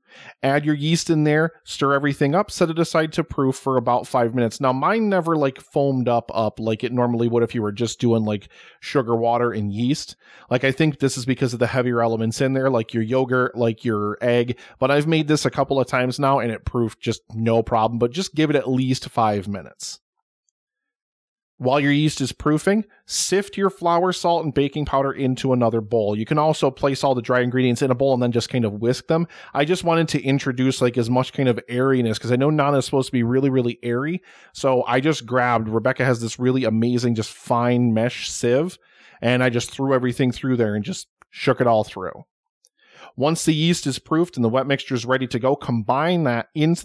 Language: English